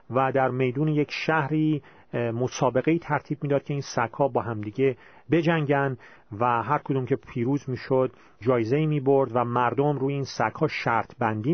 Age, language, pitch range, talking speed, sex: 40-59, Persian, 130-190 Hz, 180 wpm, male